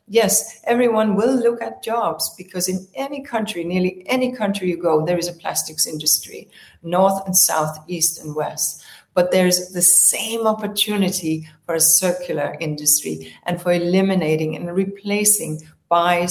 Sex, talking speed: female, 155 wpm